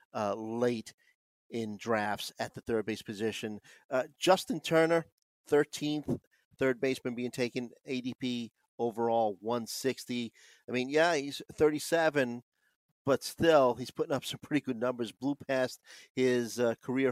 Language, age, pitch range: English, 40-59, 115-145 Hz